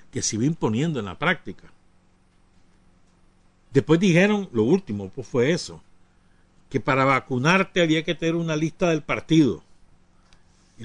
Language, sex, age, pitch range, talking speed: Spanish, male, 60-79, 90-150 Hz, 140 wpm